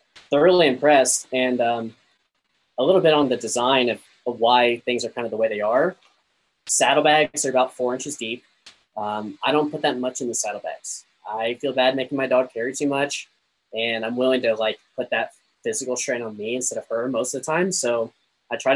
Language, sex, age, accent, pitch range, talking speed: English, male, 10-29, American, 115-135 Hz, 210 wpm